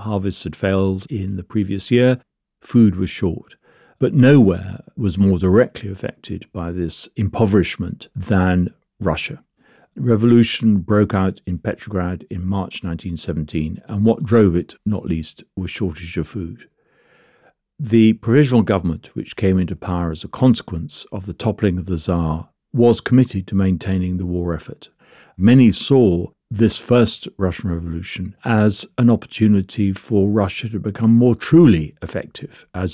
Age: 50-69